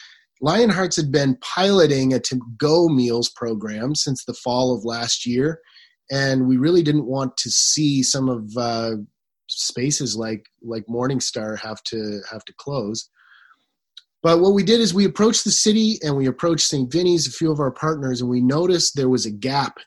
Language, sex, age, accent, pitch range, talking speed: English, male, 30-49, American, 120-150 Hz, 180 wpm